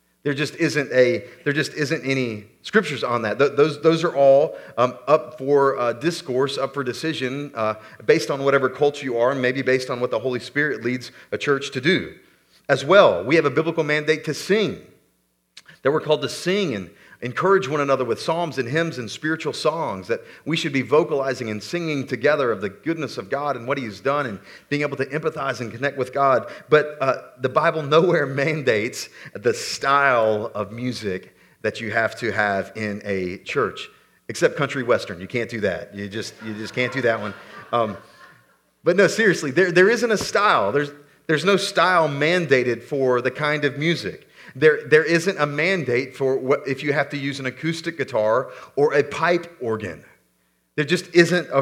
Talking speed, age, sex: 195 wpm, 40-59, male